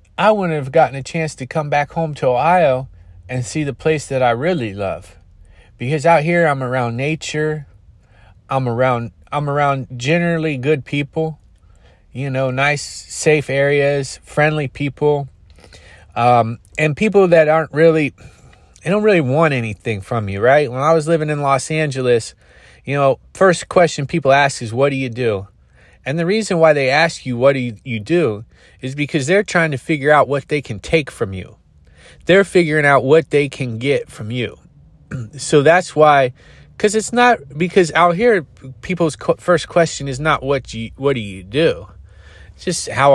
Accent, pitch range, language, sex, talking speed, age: American, 120-160 Hz, English, male, 180 wpm, 30-49